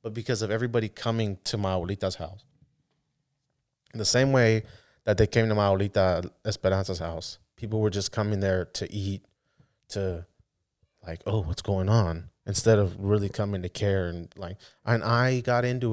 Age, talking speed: 20-39, 165 wpm